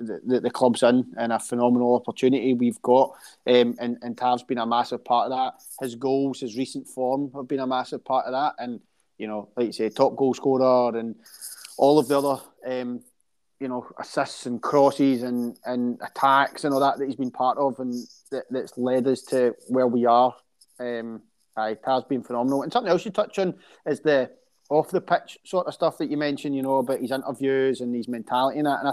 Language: English